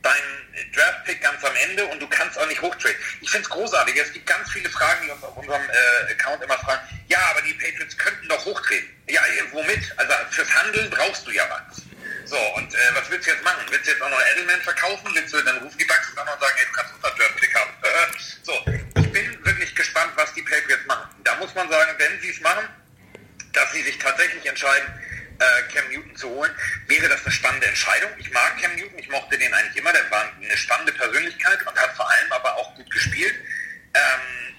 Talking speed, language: 225 wpm, German